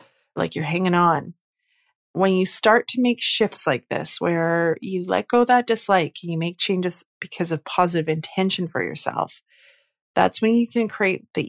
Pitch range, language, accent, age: 165-225 Hz, English, American, 30-49